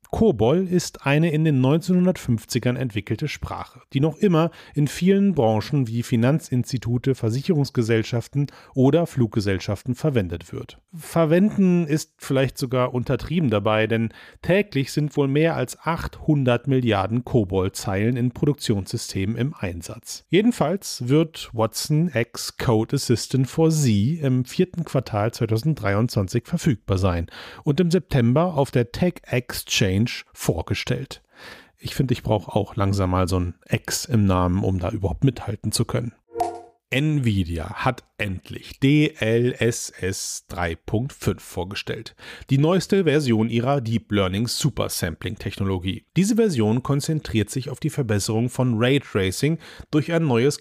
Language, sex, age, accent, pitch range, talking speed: German, male, 40-59, German, 110-150 Hz, 130 wpm